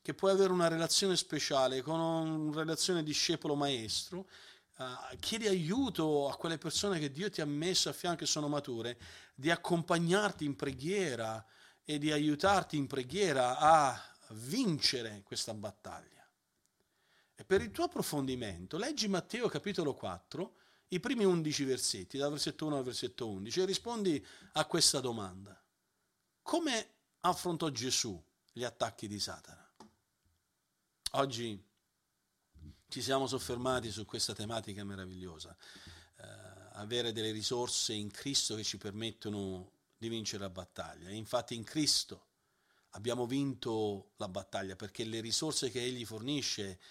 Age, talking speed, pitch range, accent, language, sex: 40-59, 135 wpm, 105-160 Hz, native, Italian, male